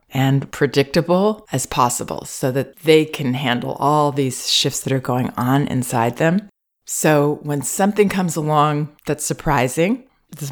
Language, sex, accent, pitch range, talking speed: English, female, American, 135-160 Hz, 150 wpm